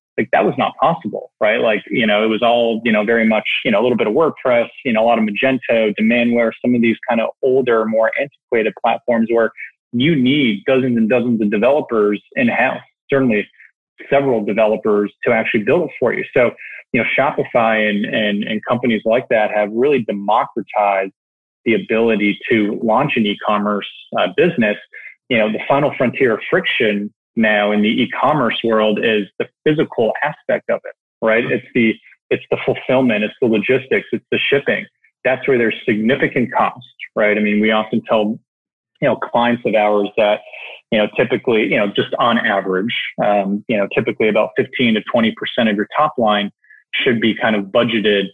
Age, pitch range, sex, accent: 30-49, 105-120 Hz, male, American